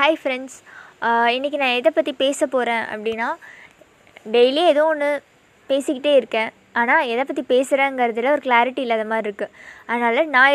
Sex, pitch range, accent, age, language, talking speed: female, 240-305 Hz, native, 20-39, Tamil, 140 wpm